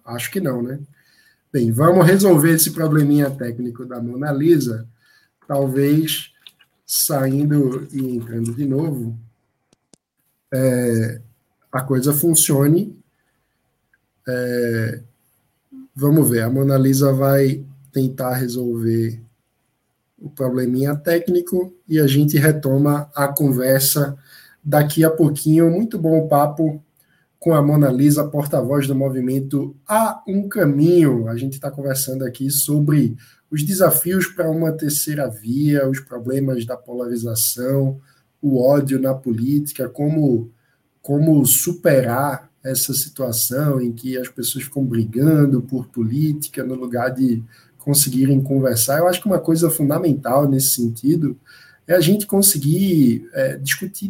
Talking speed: 120 wpm